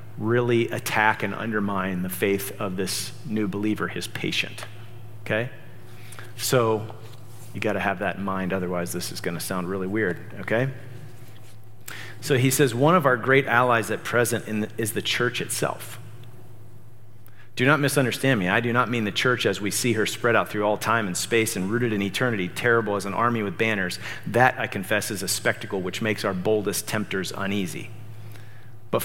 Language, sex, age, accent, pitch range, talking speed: English, male, 40-59, American, 105-120 Hz, 180 wpm